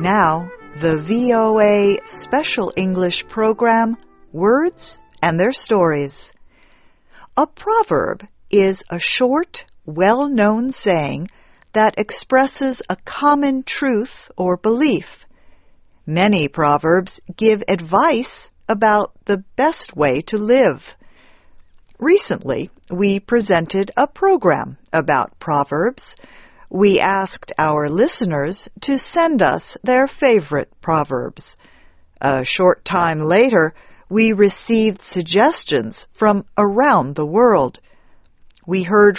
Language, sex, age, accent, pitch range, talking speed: English, female, 50-69, American, 170-240 Hz, 100 wpm